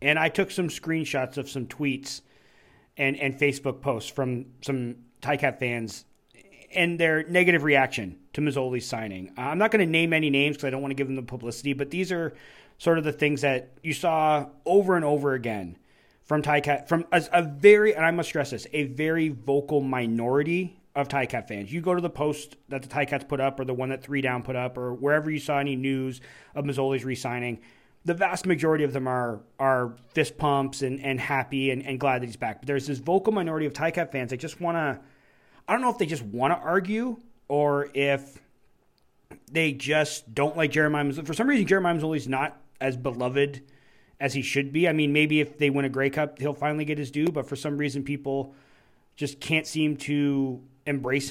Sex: male